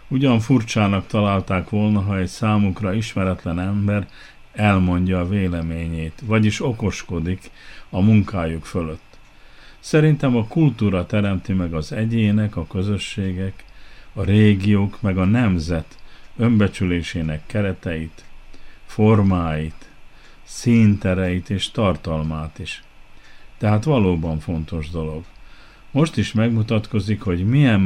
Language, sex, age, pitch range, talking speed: Hungarian, male, 50-69, 90-110 Hz, 100 wpm